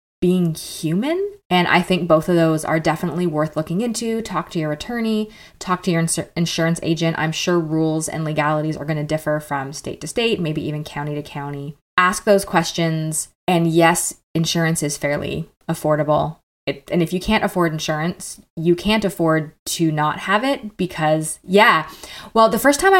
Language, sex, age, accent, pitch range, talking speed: English, female, 20-39, American, 160-220 Hz, 175 wpm